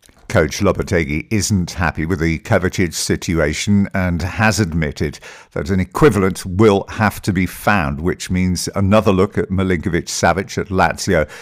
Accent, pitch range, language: British, 85-100 Hz, English